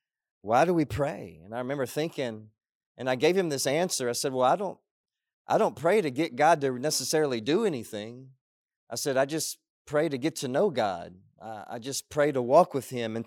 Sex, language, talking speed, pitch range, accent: male, English, 215 wpm, 130-160 Hz, American